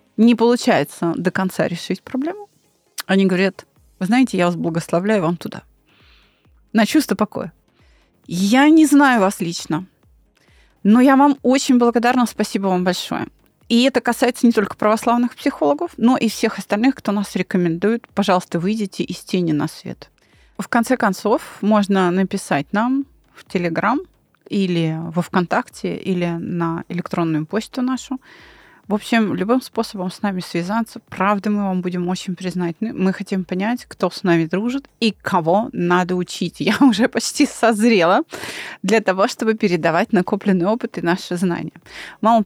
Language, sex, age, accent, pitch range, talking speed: Russian, female, 30-49, native, 180-235 Hz, 150 wpm